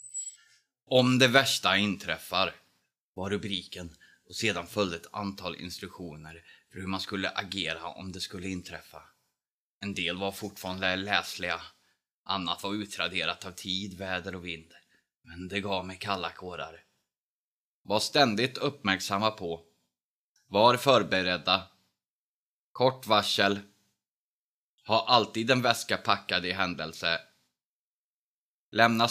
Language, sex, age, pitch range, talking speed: Swedish, male, 20-39, 85-100 Hz, 115 wpm